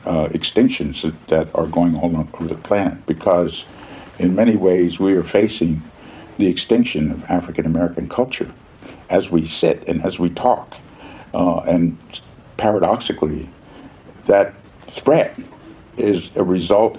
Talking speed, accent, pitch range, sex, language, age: 130 wpm, American, 85-105 Hz, male, English, 60-79